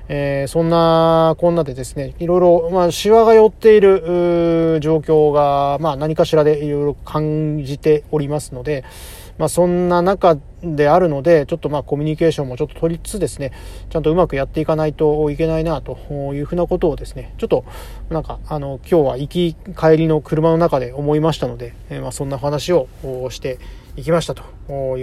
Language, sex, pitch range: Japanese, male, 140-175 Hz